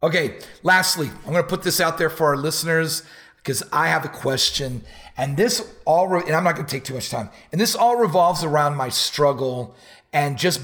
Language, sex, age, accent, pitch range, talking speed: English, male, 40-59, American, 130-165 Hz, 215 wpm